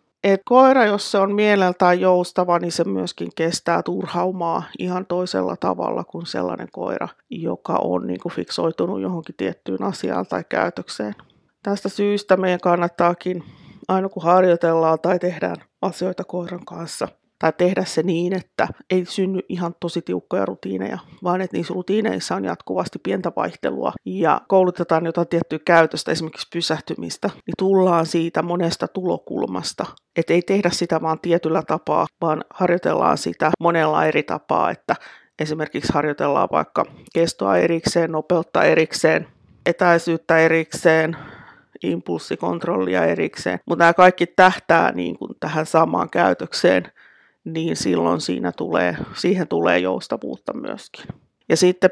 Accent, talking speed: native, 125 wpm